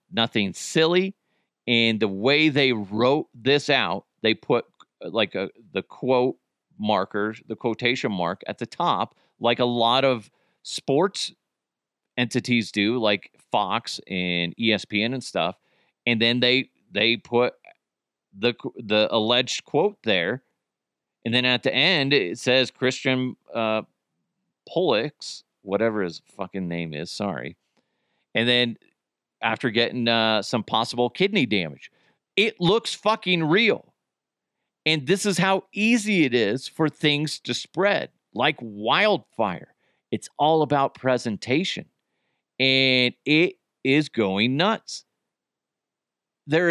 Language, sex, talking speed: English, male, 125 wpm